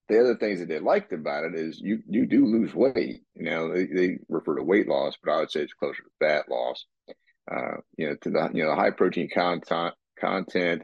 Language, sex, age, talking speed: English, male, 40-59, 235 wpm